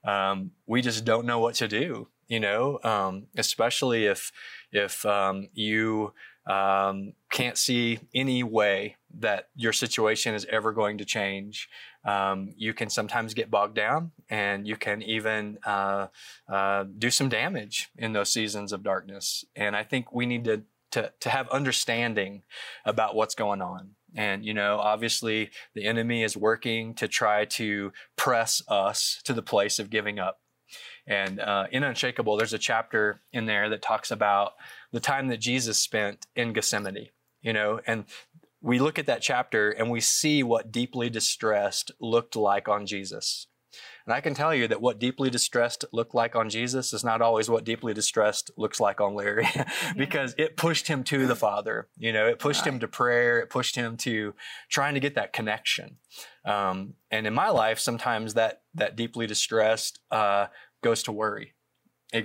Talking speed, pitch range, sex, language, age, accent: 175 wpm, 105-120 Hz, male, English, 20-39, American